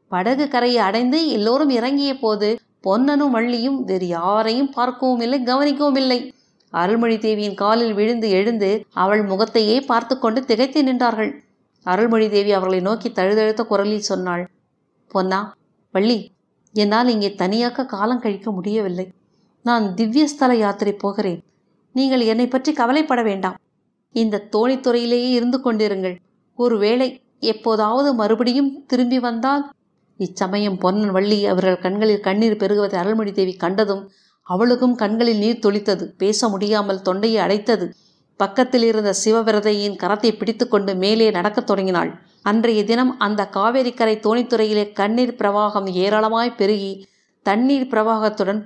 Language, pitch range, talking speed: Tamil, 200-240 Hz, 110 wpm